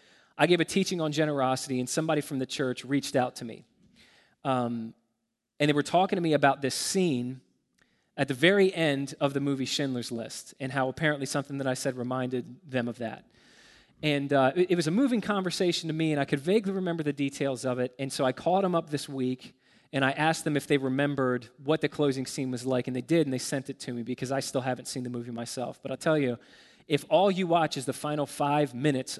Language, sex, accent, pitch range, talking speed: English, male, American, 125-150 Hz, 235 wpm